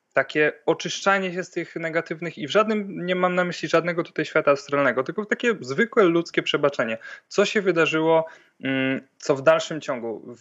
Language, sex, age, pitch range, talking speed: Polish, male, 20-39, 125-155 Hz, 165 wpm